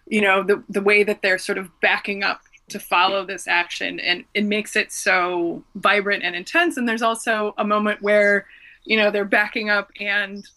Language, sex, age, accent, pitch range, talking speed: English, female, 20-39, American, 200-225 Hz, 200 wpm